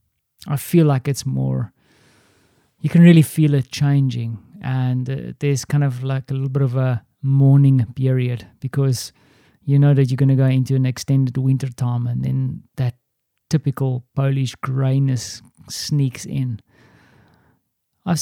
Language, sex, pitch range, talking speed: English, male, 125-140 Hz, 150 wpm